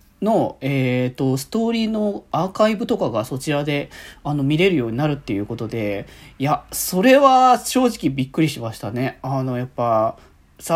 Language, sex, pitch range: Japanese, male, 125-185 Hz